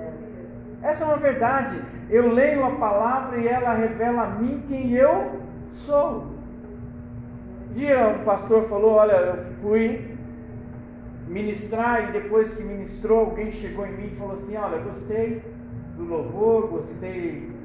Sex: male